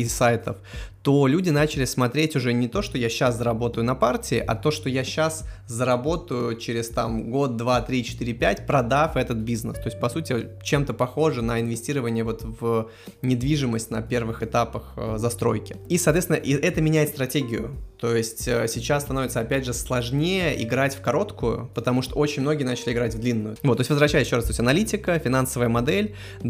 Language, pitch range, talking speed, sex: Russian, 115-140 Hz, 180 wpm, male